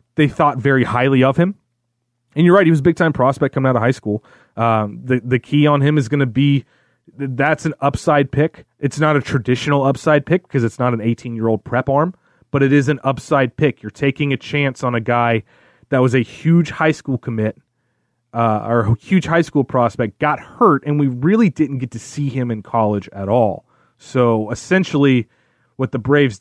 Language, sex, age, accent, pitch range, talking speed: English, male, 30-49, American, 120-150 Hz, 210 wpm